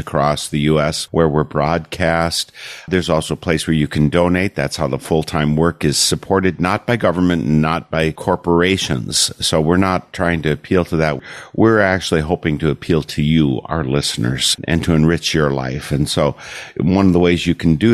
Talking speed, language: 195 wpm, English